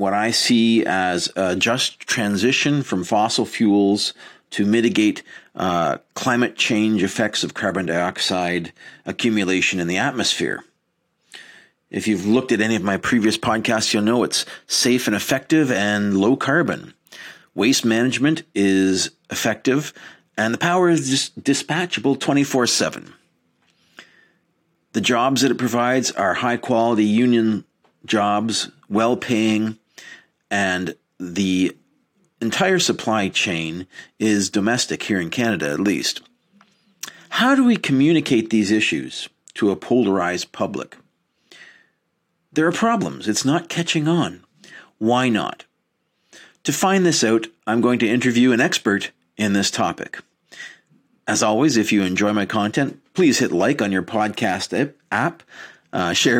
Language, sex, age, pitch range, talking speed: English, male, 40-59, 105-135 Hz, 130 wpm